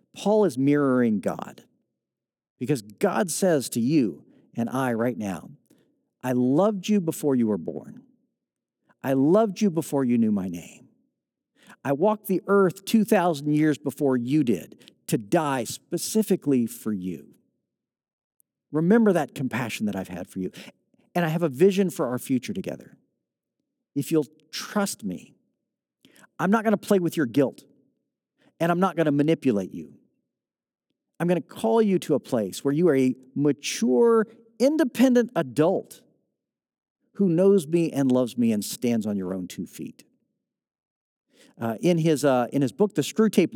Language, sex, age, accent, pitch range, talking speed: English, male, 50-69, American, 125-195 Hz, 155 wpm